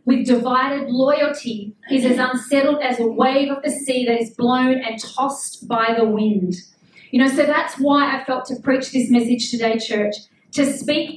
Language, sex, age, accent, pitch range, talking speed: English, female, 40-59, Australian, 225-270 Hz, 190 wpm